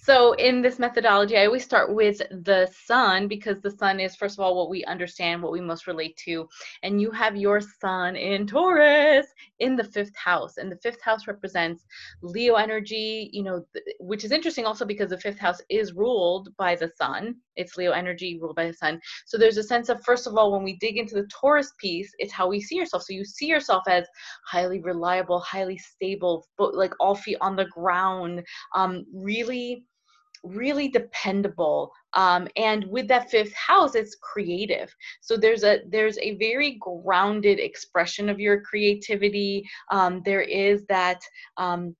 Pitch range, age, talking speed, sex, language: 185-230 Hz, 20-39, 185 wpm, female, English